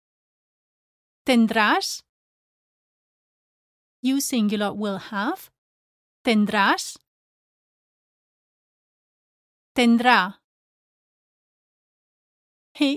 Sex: female